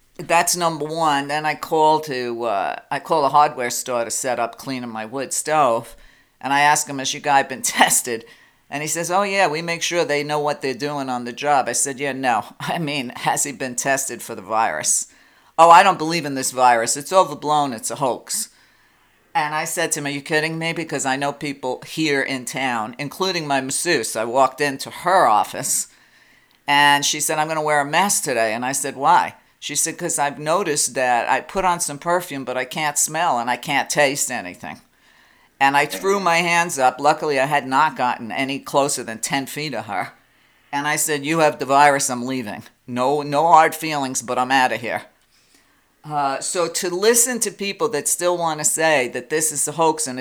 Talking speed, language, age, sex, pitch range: 215 wpm, English, 50-69, female, 135-160 Hz